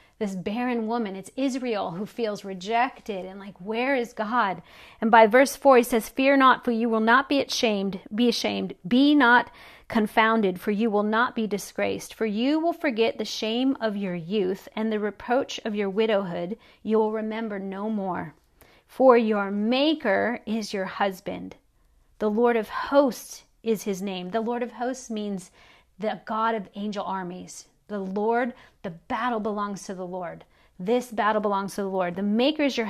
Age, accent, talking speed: 40-59, American, 180 wpm